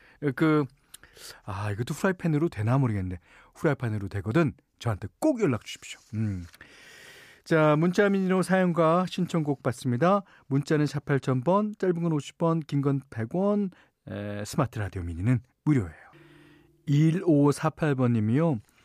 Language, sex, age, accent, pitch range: Korean, male, 40-59, native, 115-165 Hz